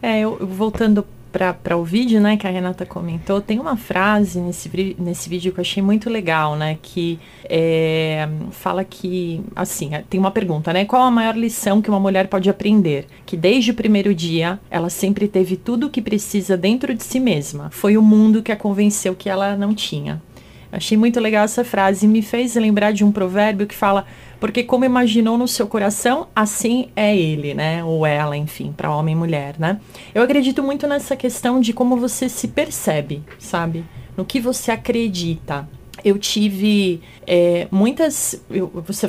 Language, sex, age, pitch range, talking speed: Portuguese, female, 30-49, 170-215 Hz, 185 wpm